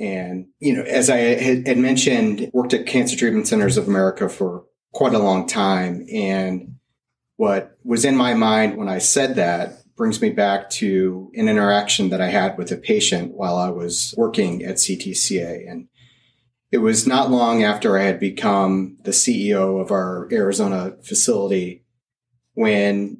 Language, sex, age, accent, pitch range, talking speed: English, male, 30-49, American, 100-135 Hz, 165 wpm